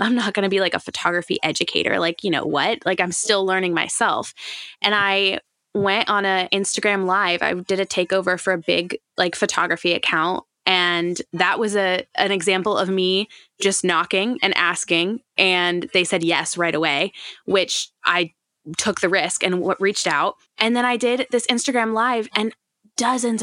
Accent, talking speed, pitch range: American, 180 wpm, 190-235 Hz